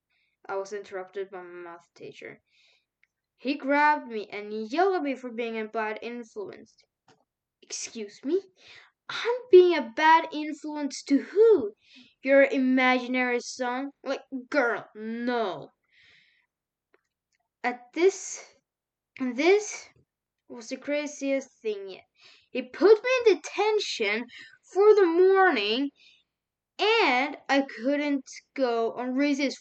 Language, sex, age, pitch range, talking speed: English, female, 10-29, 245-345 Hz, 115 wpm